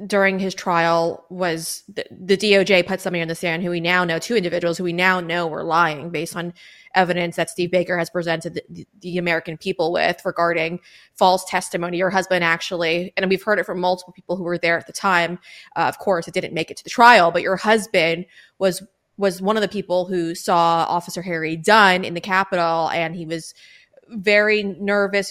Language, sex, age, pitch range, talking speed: English, female, 20-39, 170-185 Hz, 210 wpm